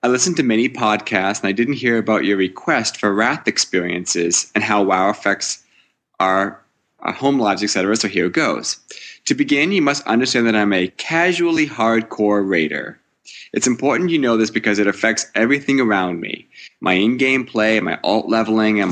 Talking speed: 180 wpm